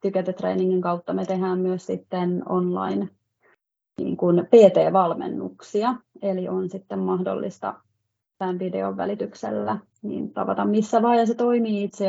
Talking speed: 120 wpm